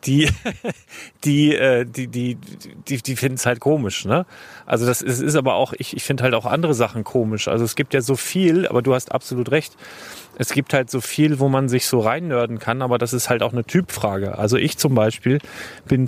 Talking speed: 215 wpm